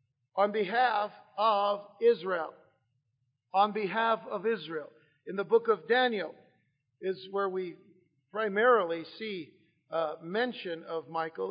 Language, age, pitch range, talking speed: English, 50-69, 180-230 Hz, 115 wpm